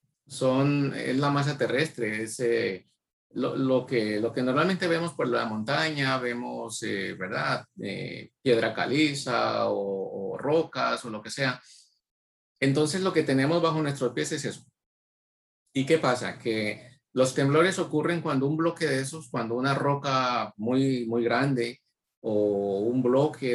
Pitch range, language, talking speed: 120-150 Hz, English, 155 wpm